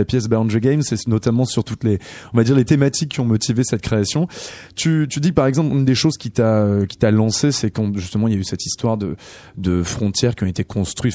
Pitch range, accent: 105-135 Hz, French